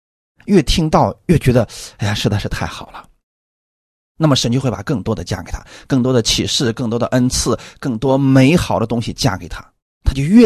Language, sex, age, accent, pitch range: Chinese, male, 30-49, native, 100-155 Hz